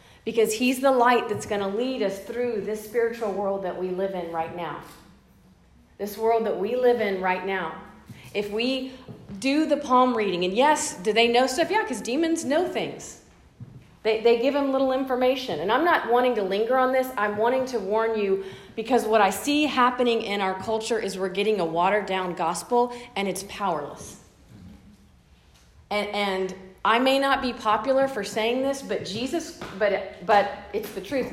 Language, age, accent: English, 40-59, American